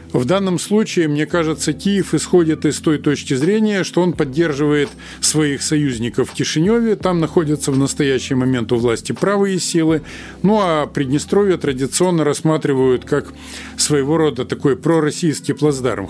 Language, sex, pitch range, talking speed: Russian, male, 135-175 Hz, 140 wpm